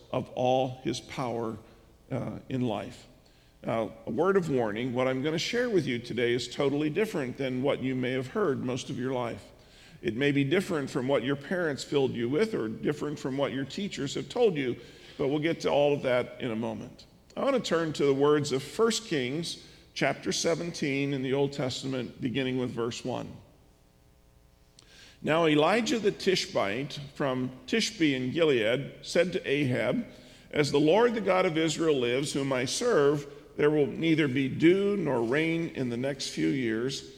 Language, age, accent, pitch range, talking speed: English, 40-59, American, 125-160 Hz, 190 wpm